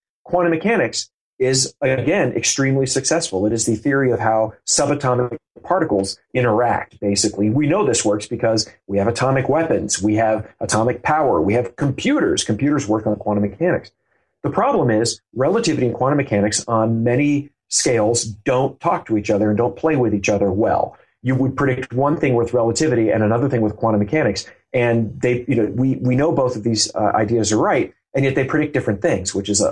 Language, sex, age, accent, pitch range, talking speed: English, male, 40-59, American, 110-135 Hz, 190 wpm